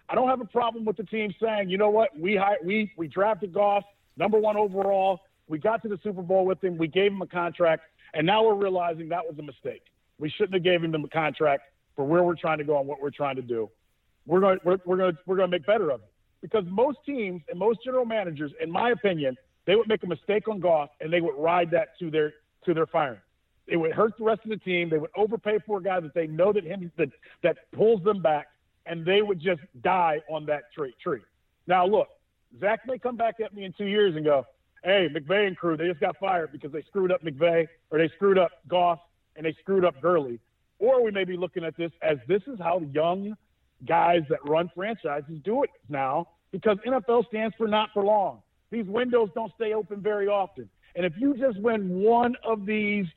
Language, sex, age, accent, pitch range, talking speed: English, male, 40-59, American, 160-215 Hz, 235 wpm